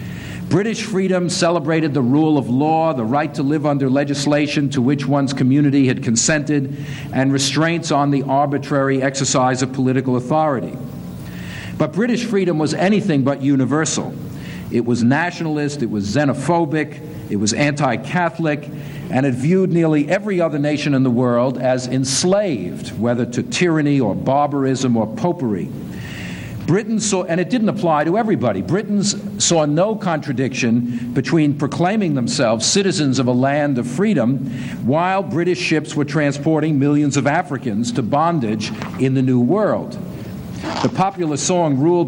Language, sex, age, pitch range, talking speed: English, male, 50-69, 130-170 Hz, 145 wpm